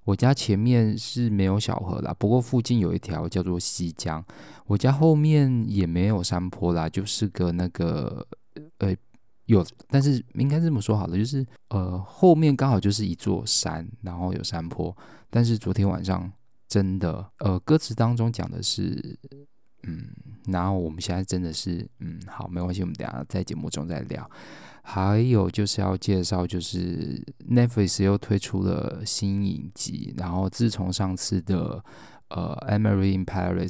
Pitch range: 90-115 Hz